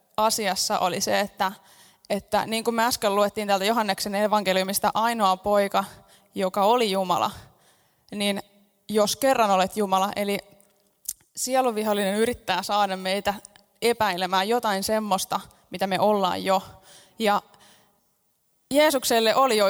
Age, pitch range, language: 20-39, 195-220 Hz, Finnish